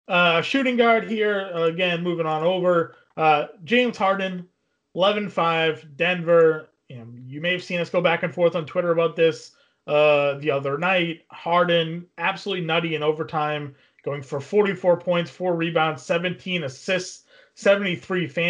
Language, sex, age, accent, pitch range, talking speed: English, male, 30-49, American, 155-190 Hz, 145 wpm